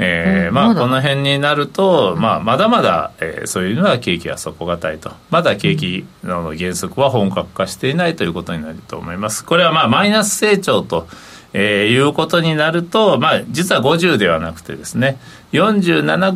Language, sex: Japanese, male